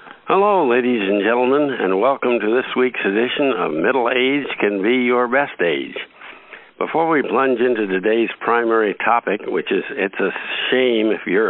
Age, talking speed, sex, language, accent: 60-79, 165 wpm, male, English, American